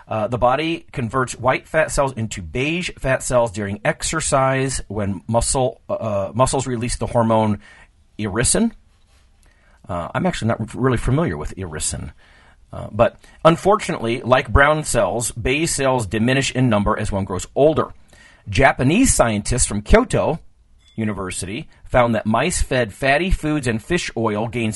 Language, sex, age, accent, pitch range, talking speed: English, male, 40-59, American, 100-135 Hz, 145 wpm